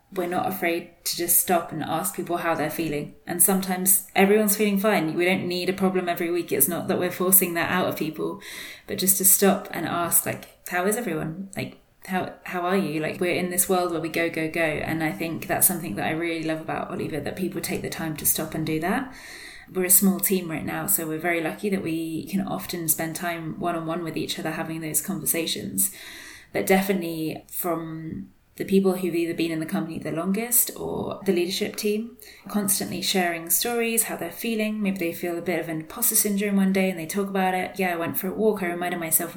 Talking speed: 230 wpm